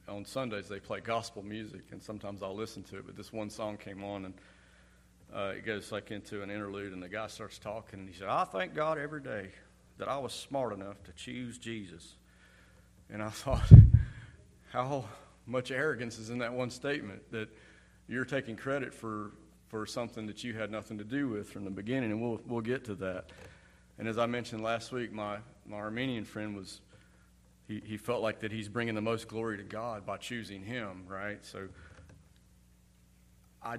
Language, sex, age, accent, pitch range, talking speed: English, male, 40-59, American, 95-115 Hz, 195 wpm